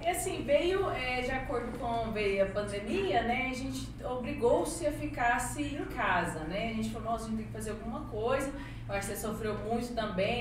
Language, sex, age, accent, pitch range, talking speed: Portuguese, female, 20-39, Brazilian, 155-250 Hz, 210 wpm